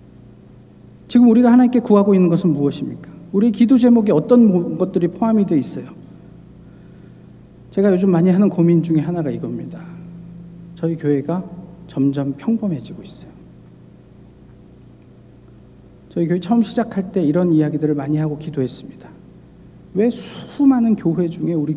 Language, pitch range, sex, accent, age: Korean, 165-215 Hz, male, native, 50-69